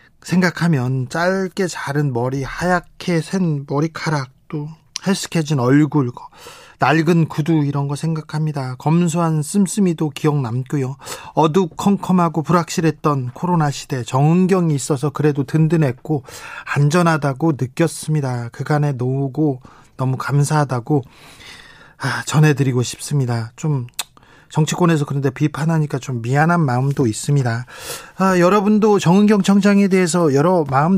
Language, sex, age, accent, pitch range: Korean, male, 20-39, native, 140-165 Hz